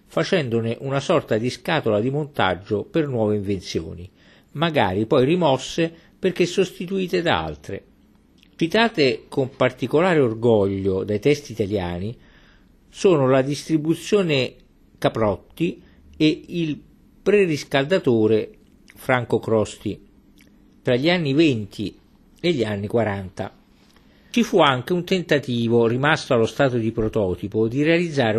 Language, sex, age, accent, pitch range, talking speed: Italian, male, 50-69, native, 110-155 Hz, 110 wpm